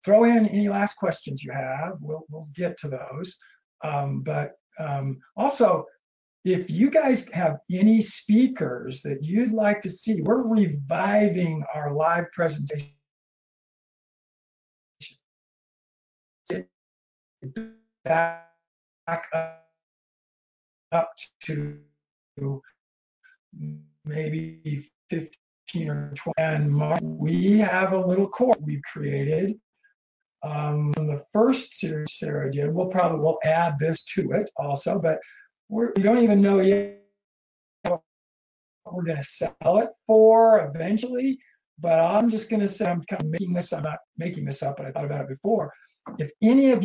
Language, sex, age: English, male, 60-79